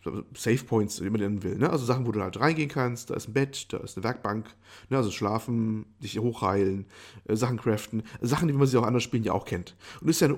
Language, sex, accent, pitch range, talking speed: German, male, German, 110-145 Hz, 260 wpm